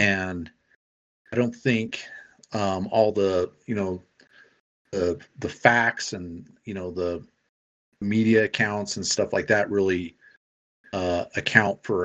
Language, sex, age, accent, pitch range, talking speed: English, male, 40-59, American, 90-110 Hz, 130 wpm